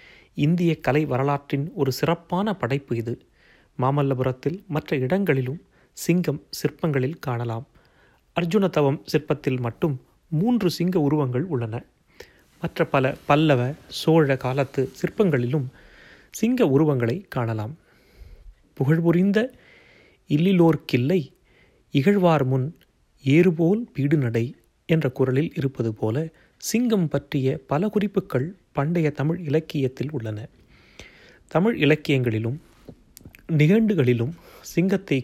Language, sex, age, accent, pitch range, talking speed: Tamil, male, 30-49, native, 130-165 Hz, 90 wpm